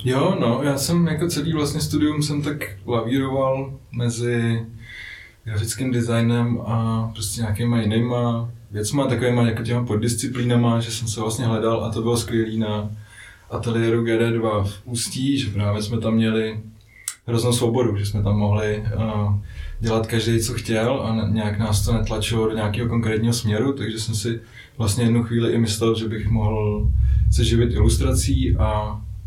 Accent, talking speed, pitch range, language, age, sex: native, 160 wpm, 105-115 Hz, Czech, 20-39, male